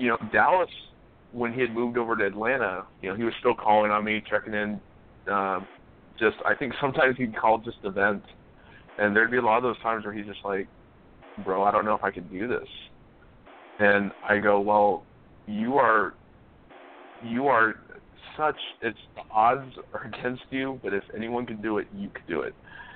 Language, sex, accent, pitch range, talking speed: English, male, American, 105-120 Hz, 195 wpm